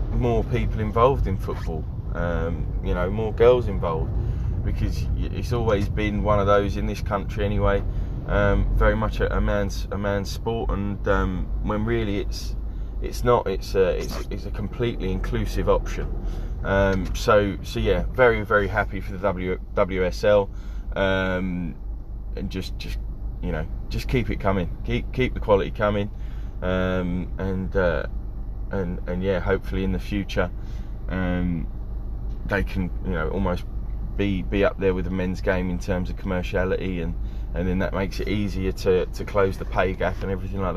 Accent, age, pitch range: British, 20-39, 95-105 Hz